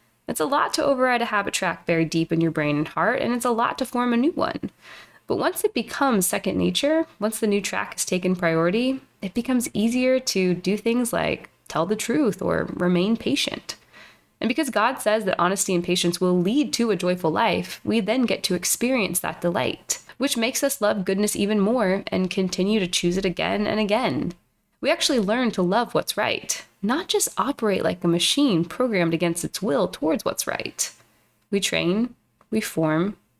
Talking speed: 200 wpm